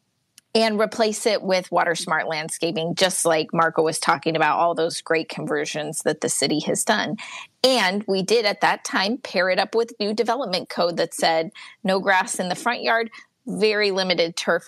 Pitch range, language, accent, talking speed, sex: 185-235 Hz, English, American, 190 wpm, female